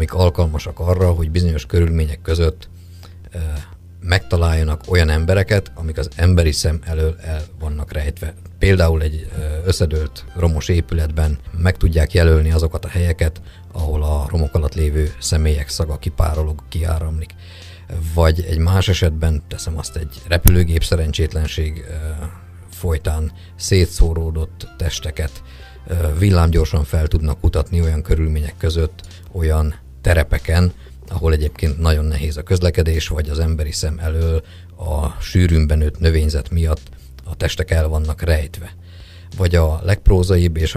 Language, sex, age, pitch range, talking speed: Hungarian, male, 50-69, 80-90 Hz, 125 wpm